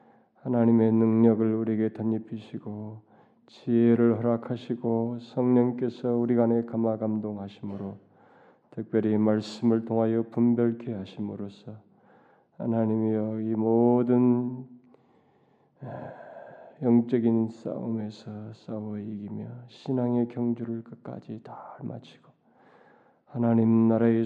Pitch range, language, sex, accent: 110-120 Hz, Korean, male, native